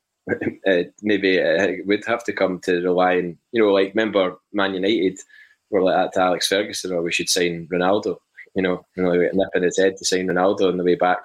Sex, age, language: male, 20-39, English